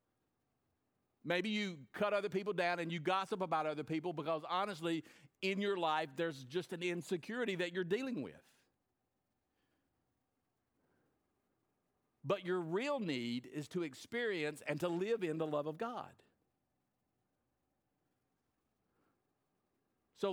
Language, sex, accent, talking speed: English, male, American, 120 wpm